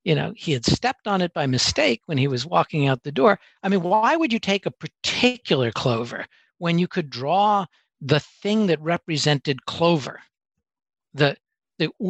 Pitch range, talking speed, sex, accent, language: 150-225 Hz, 180 wpm, male, American, English